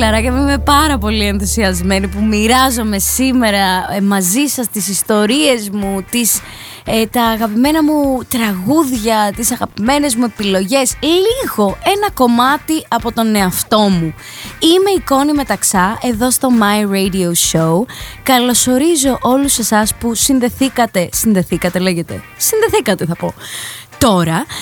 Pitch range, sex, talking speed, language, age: 200-285 Hz, female, 120 wpm, Greek, 20-39